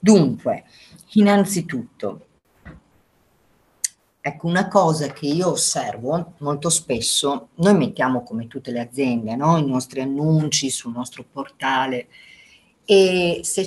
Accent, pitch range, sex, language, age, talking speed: native, 135-175 Hz, female, Italian, 40-59, 105 wpm